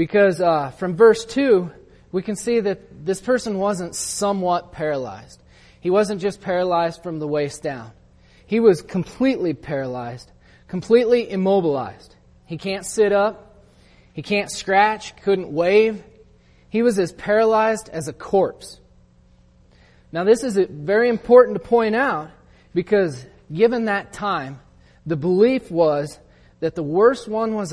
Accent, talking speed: American, 140 wpm